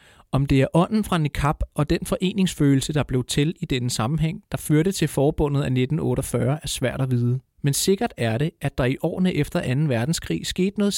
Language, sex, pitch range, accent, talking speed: Danish, male, 130-160 Hz, native, 210 wpm